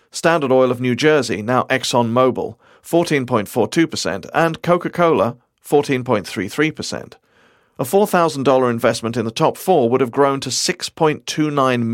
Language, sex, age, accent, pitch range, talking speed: English, male, 40-59, British, 115-155 Hz, 115 wpm